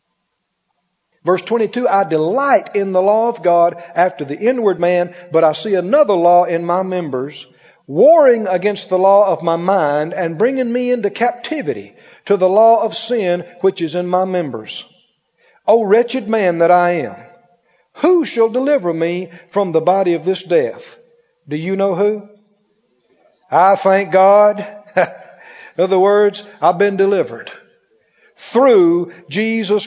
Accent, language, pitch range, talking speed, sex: American, English, 180-230 Hz, 150 wpm, male